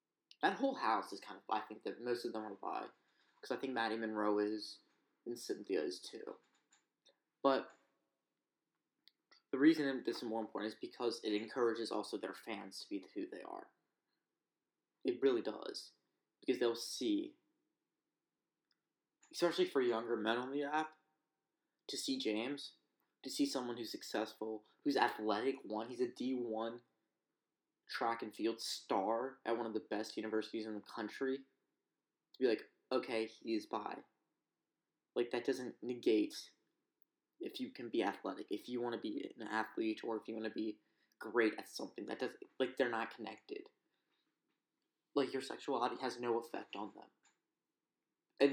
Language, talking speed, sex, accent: English, 160 wpm, male, American